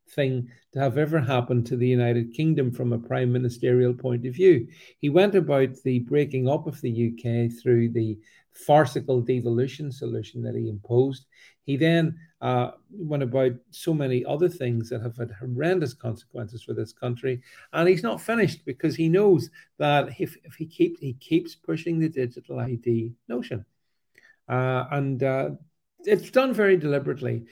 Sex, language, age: male, English, 50-69